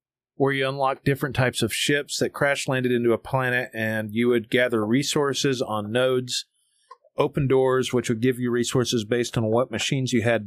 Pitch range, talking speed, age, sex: 115-135 Hz, 190 wpm, 40-59, male